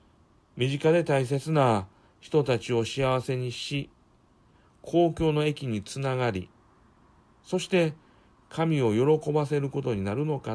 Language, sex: Japanese, male